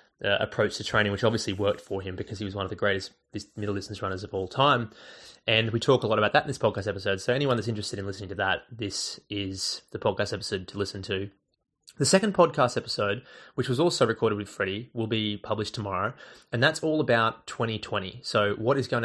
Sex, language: male, English